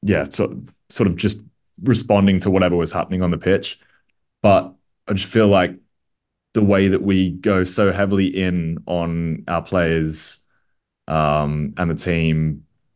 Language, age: English, 20-39